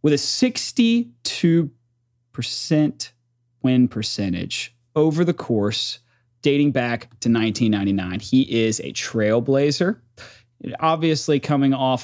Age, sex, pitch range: 30-49, male, 110-145 Hz